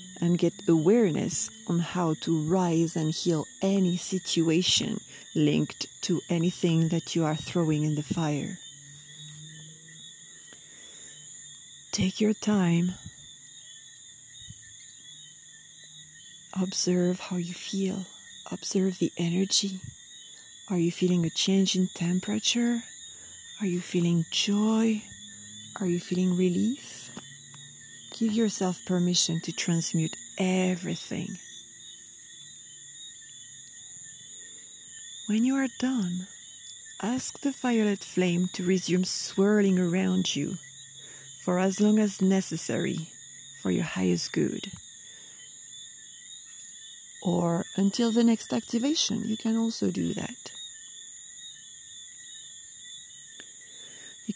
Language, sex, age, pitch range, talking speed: English, female, 30-49, 165-200 Hz, 95 wpm